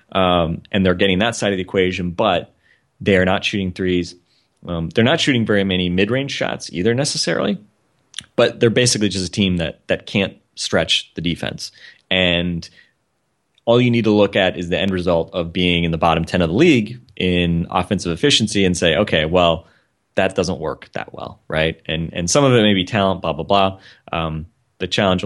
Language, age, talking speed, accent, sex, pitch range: English, 30-49, 200 wpm, American, male, 85-100 Hz